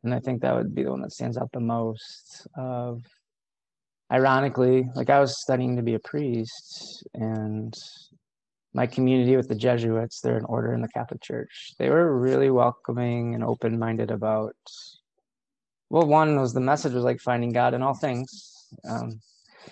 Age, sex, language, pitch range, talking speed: 20-39, male, English, 115-145 Hz, 170 wpm